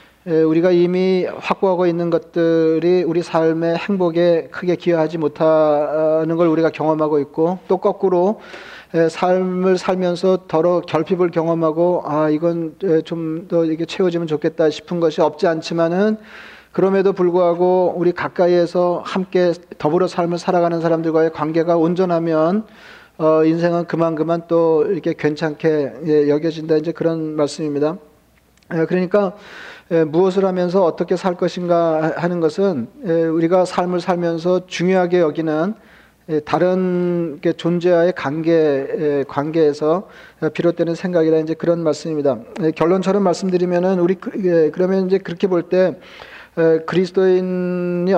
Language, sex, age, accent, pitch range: Korean, male, 40-59, native, 160-180 Hz